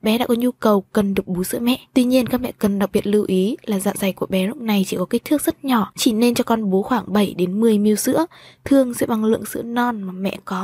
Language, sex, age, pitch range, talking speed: Vietnamese, female, 20-39, 200-245 Hz, 290 wpm